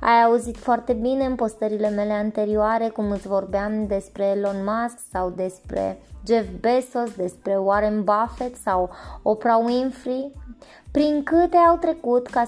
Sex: female